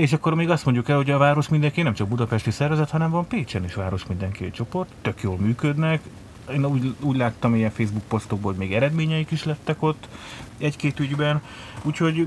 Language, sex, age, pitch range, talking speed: Hungarian, male, 30-49, 110-145 Hz, 195 wpm